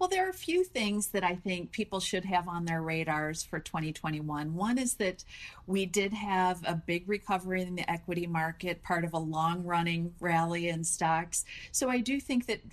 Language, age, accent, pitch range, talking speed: English, 40-59, American, 165-205 Hz, 200 wpm